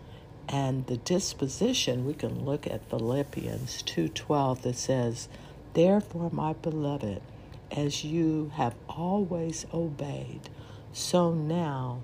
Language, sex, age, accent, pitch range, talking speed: English, female, 60-79, American, 120-160 Hz, 105 wpm